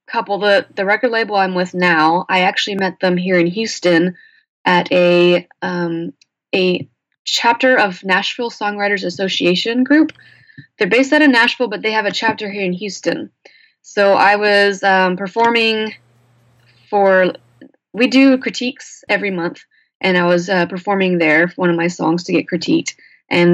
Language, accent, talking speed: English, American, 165 wpm